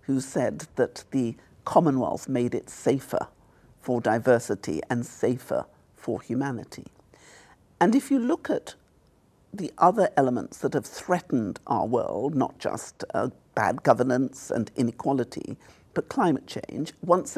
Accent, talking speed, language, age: British, 130 wpm, English, 50-69